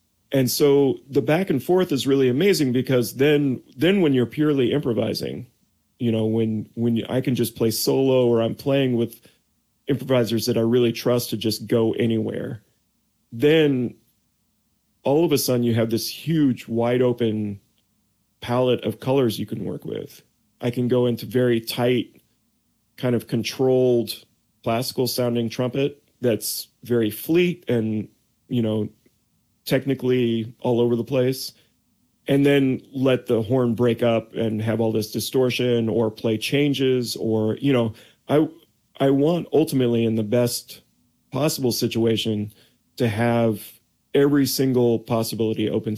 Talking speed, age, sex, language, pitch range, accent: 145 wpm, 30-49, male, English, 115-135 Hz, American